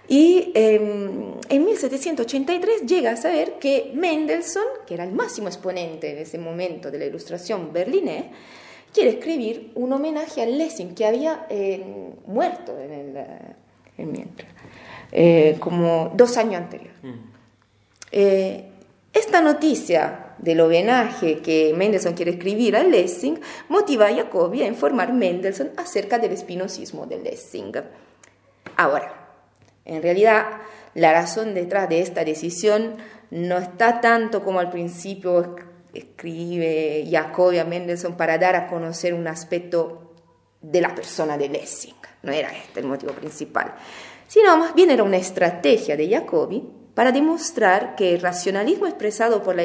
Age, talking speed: 30-49, 140 wpm